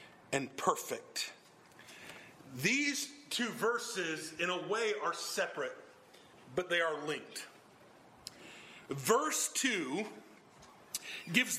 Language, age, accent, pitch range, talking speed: English, 40-59, American, 200-275 Hz, 90 wpm